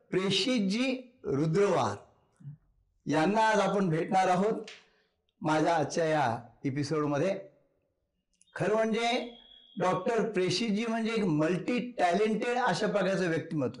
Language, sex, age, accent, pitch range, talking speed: Marathi, male, 60-79, native, 165-225 Hz, 100 wpm